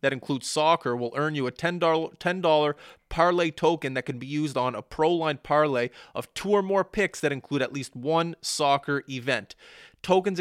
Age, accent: 30-49, American